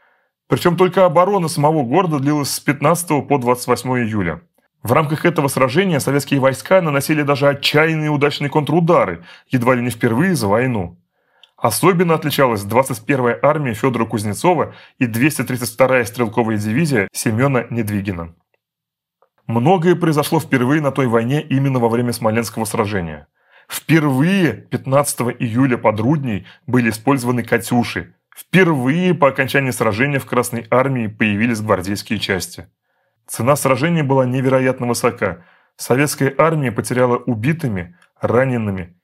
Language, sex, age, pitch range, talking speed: Russian, male, 30-49, 115-145 Hz, 120 wpm